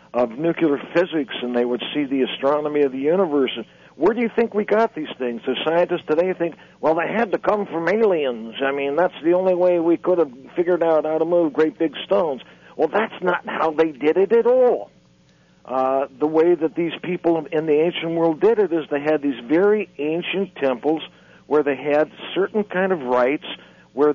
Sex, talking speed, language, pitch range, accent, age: male, 210 wpm, English, 145-180 Hz, American, 60-79